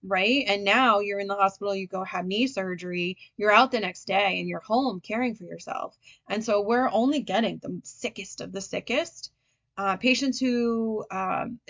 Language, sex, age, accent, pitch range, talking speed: English, female, 20-39, American, 190-240 Hz, 190 wpm